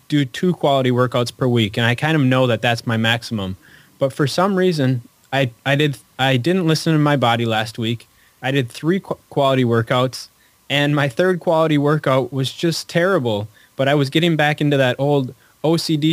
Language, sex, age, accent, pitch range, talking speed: English, male, 20-39, American, 115-145 Hz, 195 wpm